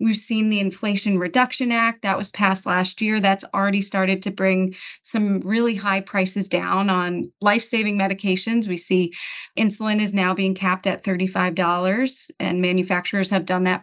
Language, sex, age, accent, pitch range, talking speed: English, female, 20-39, American, 185-220 Hz, 165 wpm